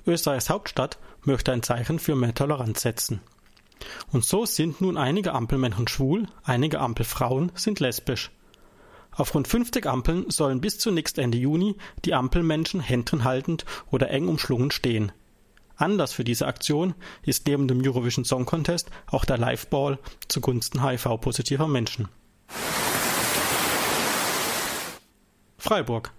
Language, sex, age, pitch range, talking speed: German, male, 30-49, 125-170 Hz, 125 wpm